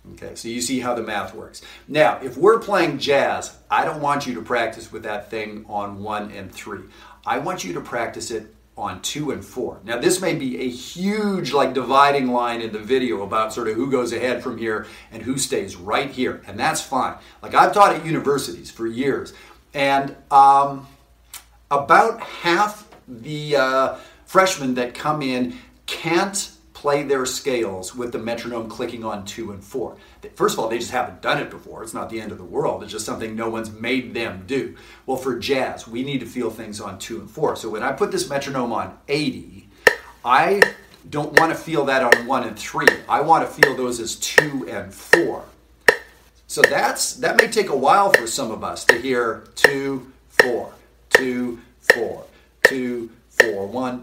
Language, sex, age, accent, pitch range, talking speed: English, male, 50-69, American, 110-140 Hz, 195 wpm